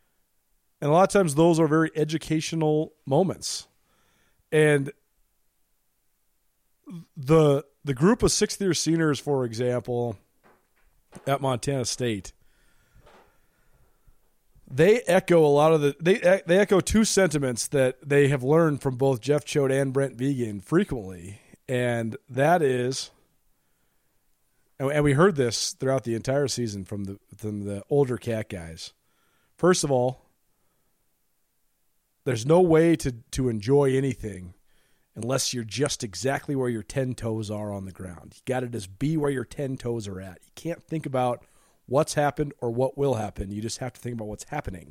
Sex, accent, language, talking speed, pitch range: male, American, English, 155 wpm, 115-155 Hz